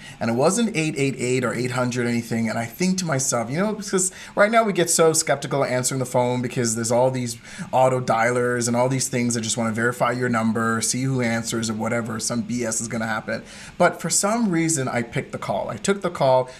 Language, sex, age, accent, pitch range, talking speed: English, male, 30-49, American, 120-170 Hz, 230 wpm